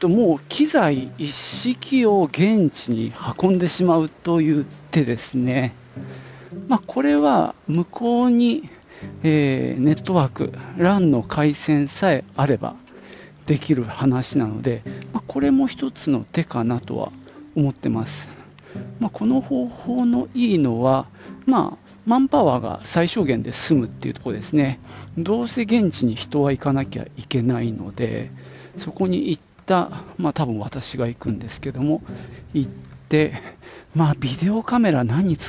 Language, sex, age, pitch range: Japanese, male, 40-59, 125-170 Hz